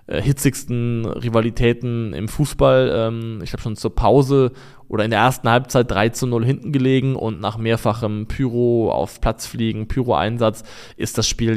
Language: German